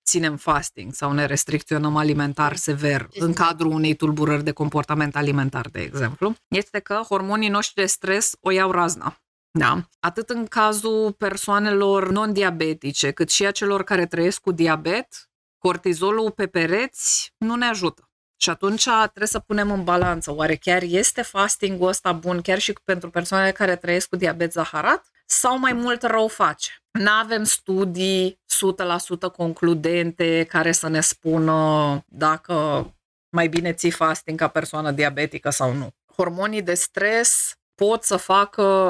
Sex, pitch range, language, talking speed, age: female, 150-200 Hz, Romanian, 145 wpm, 20-39